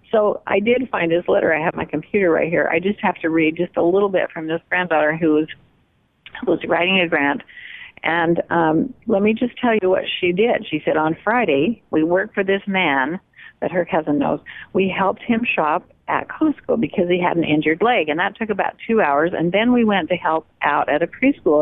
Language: English